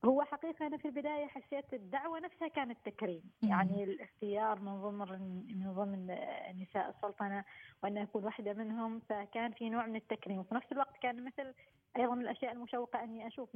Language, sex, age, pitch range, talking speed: Arabic, female, 20-39, 200-240 Hz, 165 wpm